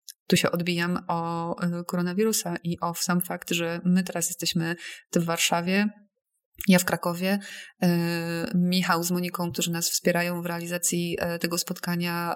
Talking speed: 135 wpm